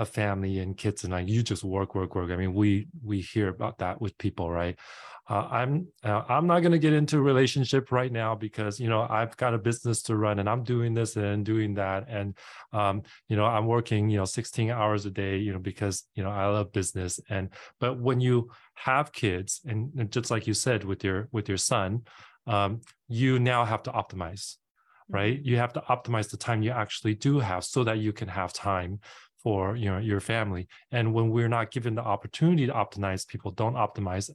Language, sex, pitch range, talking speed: English, male, 100-115 Hz, 220 wpm